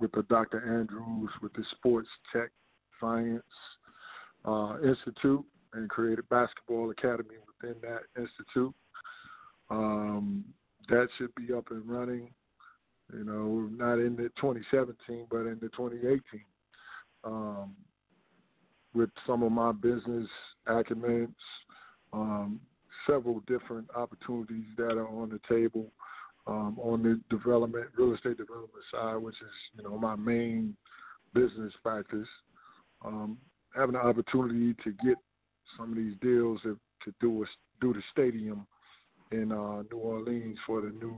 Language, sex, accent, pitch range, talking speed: English, male, American, 110-120 Hz, 135 wpm